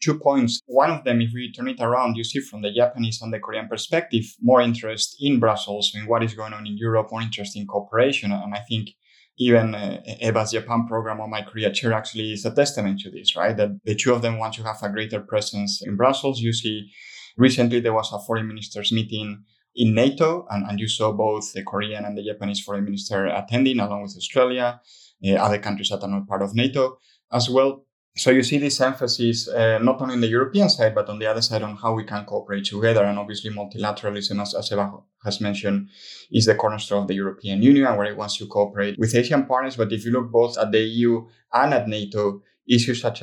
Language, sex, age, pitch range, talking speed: English, male, 20-39, 105-120 Hz, 225 wpm